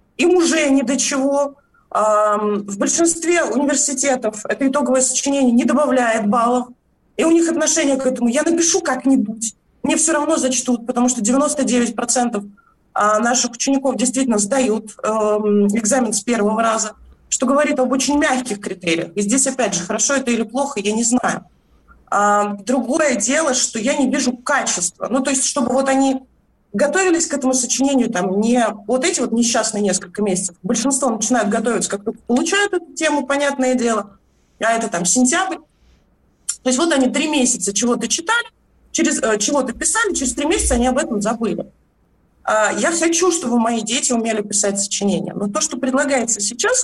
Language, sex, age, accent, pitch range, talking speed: Russian, female, 20-39, native, 220-285 Hz, 160 wpm